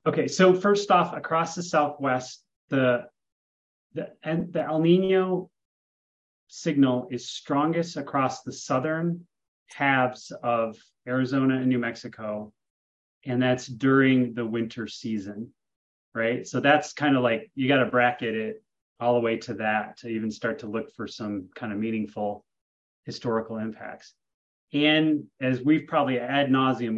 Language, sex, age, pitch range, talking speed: English, male, 30-49, 115-150 Hz, 145 wpm